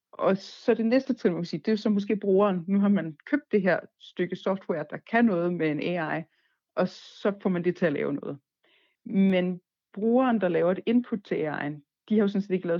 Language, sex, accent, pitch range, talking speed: Danish, female, native, 160-195 Hz, 240 wpm